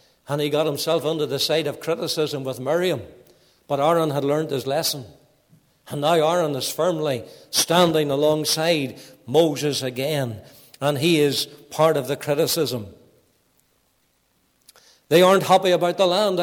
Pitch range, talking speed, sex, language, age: 140-200 Hz, 140 wpm, male, English, 60-79